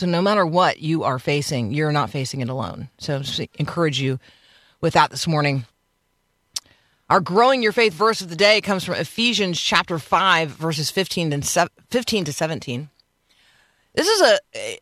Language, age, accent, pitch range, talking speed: English, 40-59, American, 130-175 Hz, 170 wpm